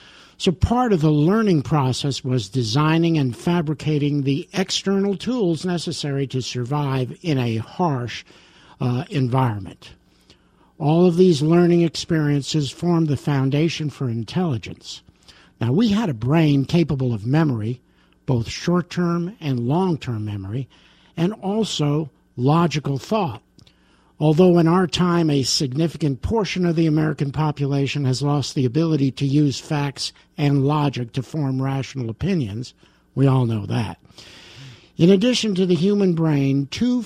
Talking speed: 135 wpm